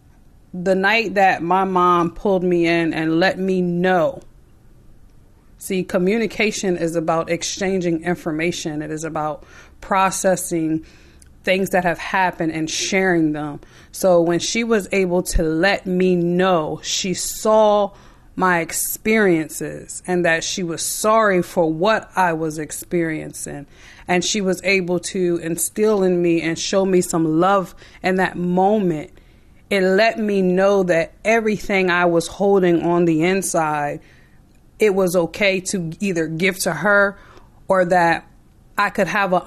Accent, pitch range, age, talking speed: American, 165-190 Hz, 30-49, 145 wpm